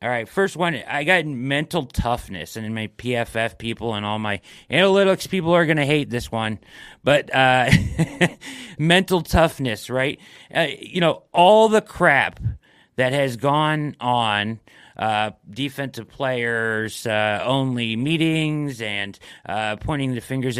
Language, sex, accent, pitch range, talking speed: English, male, American, 105-140 Hz, 145 wpm